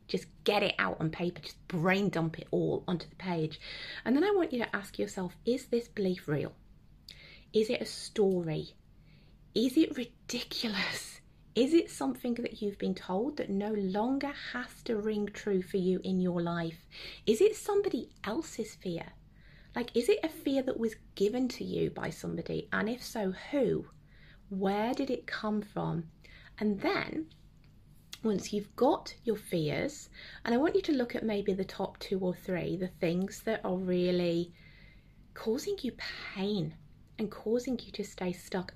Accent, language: British, English